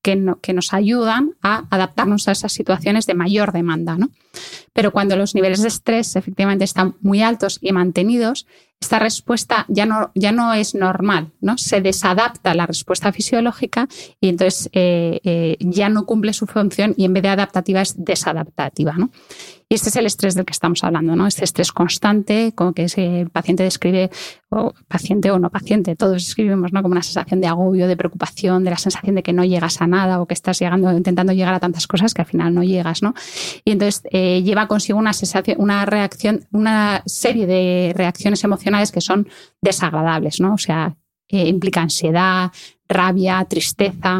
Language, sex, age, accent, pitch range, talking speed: Spanish, female, 20-39, Spanish, 180-205 Hz, 180 wpm